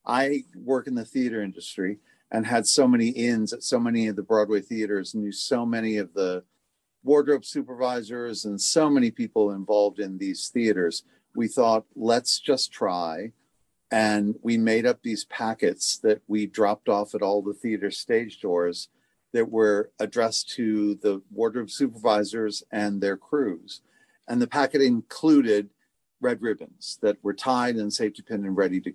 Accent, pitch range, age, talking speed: American, 105-130 Hz, 40-59, 165 wpm